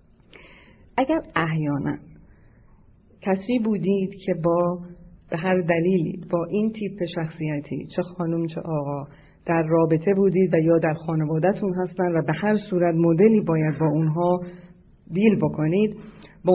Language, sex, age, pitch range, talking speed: Persian, female, 40-59, 165-200 Hz, 130 wpm